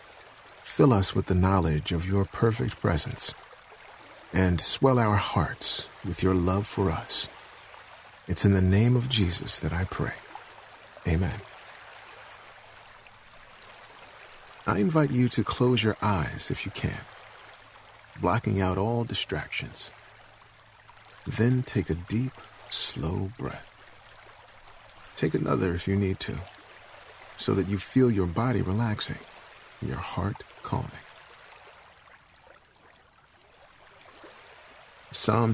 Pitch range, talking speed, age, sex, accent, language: 95-120 Hz, 110 wpm, 50-69, male, American, English